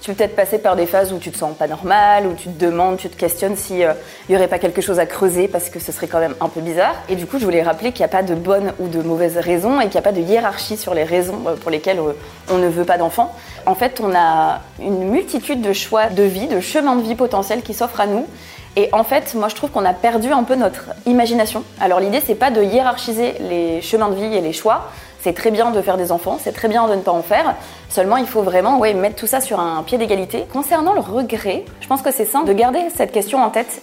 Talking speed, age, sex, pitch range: 280 wpm, 20-39, female, 180-235 Hz